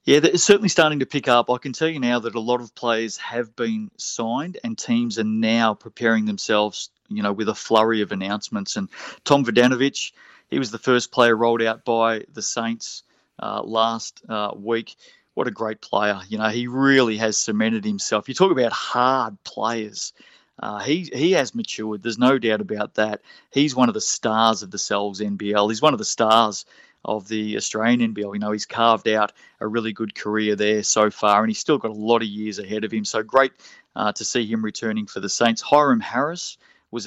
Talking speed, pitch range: 210 wpm, 105-125 Hz